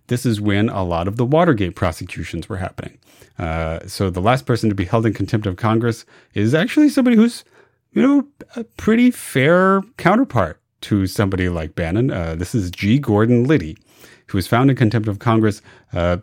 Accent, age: American, 30-49